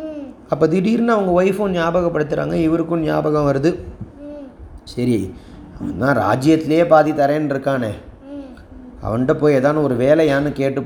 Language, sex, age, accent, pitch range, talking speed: Tamil, male, 30-49, native, 125-165 Hz, 110 wpm